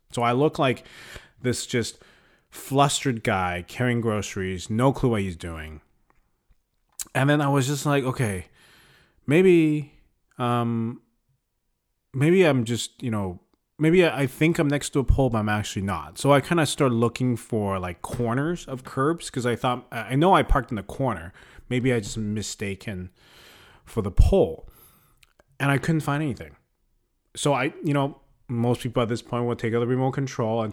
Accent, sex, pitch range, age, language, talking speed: American, male, 100-135 Hz, 30-49, English, 175 wpm